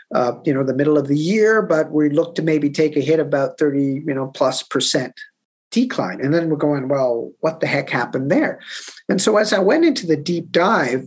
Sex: male